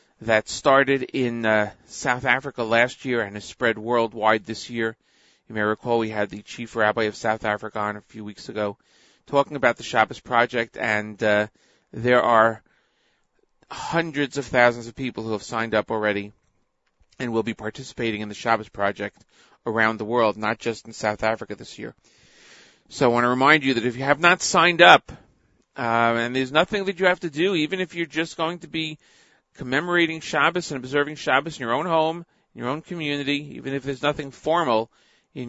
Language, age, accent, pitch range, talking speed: English, 40-59, American, 110-140 Hz, 195 wpm